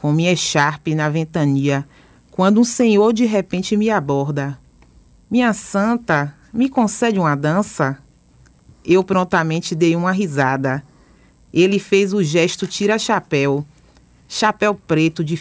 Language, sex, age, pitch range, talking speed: Portuguese, female, 30-49, 155-205 Hz, 125 wpm